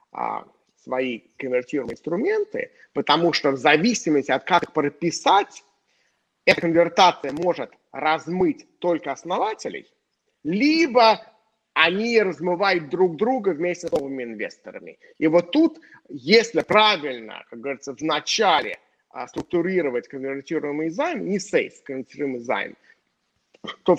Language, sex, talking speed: Russian, male, 105 wpm